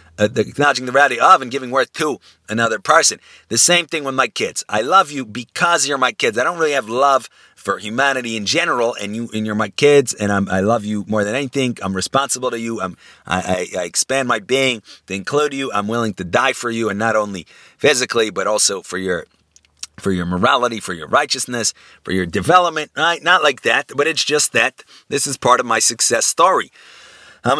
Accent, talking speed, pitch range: American, 215 wpm, 100-135 Hz